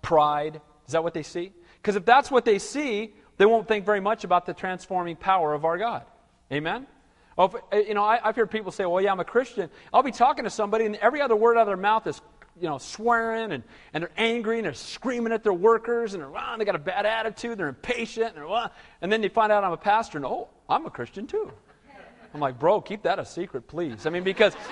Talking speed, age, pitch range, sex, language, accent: 245 wpm, 40-59, 195-260 Hz, male, English, American